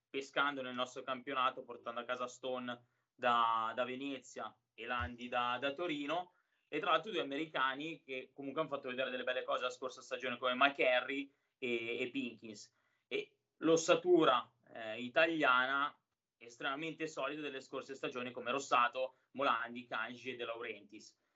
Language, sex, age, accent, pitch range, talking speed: Italian, male, 30-49, native, 125-155 Hz, 150 wpm